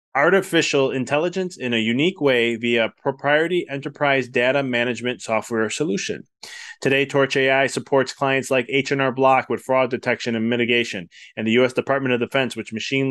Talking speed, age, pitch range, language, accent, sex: 165 wpm, 30-49, 120-140 Hz, English, American, male